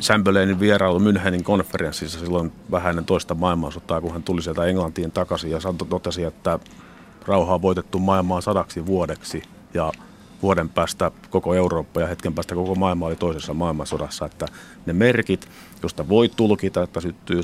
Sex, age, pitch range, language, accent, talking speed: male, 50-69, 85-95 Hz, Finnish, native, 150 wpm